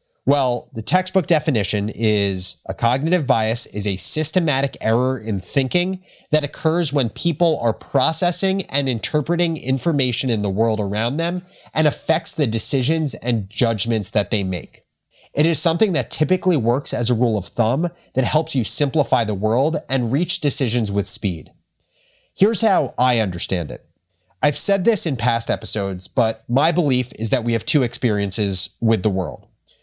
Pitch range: 110-150 Hz